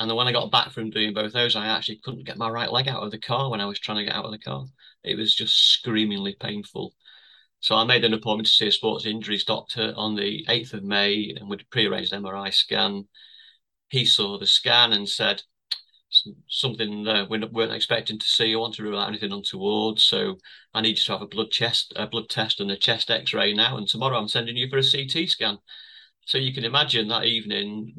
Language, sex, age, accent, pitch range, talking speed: English, male, 30-49, British, 105-115 Hz, 230 wpm